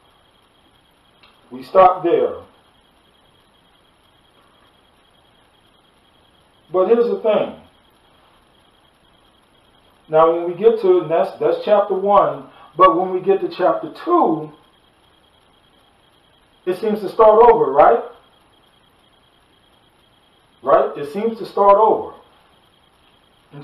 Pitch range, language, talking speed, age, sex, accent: 125-210 Hz, English, 95 wpm, 40-59, male, American